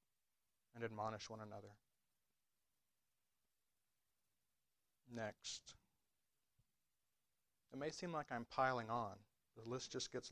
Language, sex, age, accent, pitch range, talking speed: English, male, 40-59, American, 115-130 Hz, 95 wpm